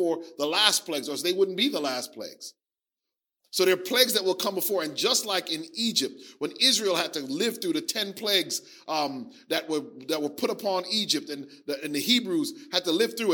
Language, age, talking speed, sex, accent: English, 40-59, 215 wpm, male, American